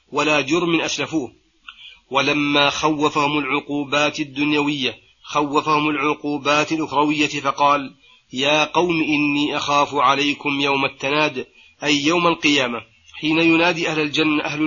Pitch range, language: 140-155 Hz, Arabic